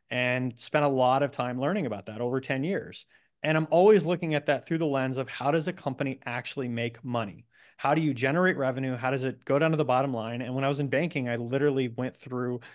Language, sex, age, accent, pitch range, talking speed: English, male, 30-49, American, 125-155 Hz, 250 wpm